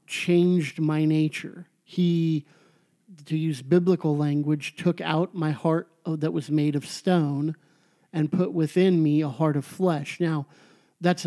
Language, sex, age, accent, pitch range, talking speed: English, male, 50-69, American, 155-180 Hz, 145 wpm